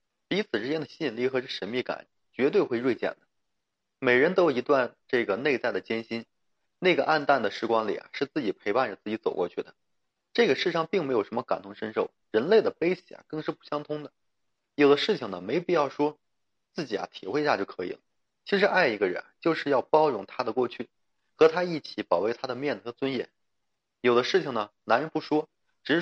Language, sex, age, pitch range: Chinese, male, 30-49, 115-155 Hz